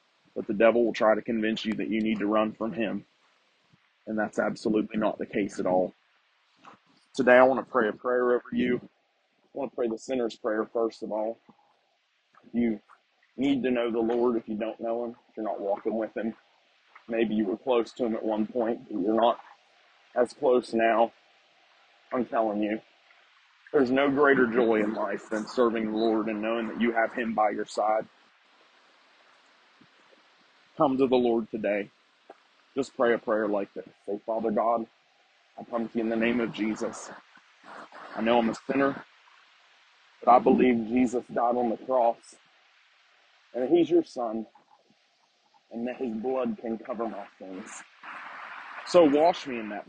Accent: American